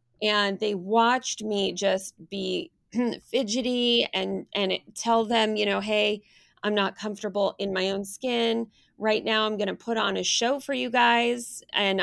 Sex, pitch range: female, 185-225 Hz